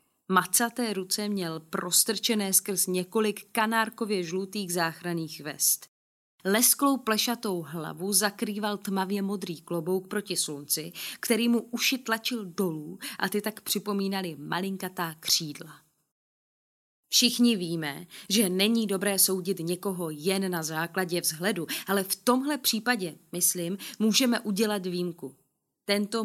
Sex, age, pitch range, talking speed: female, 20-39, 175-215 Hz, 115 wpm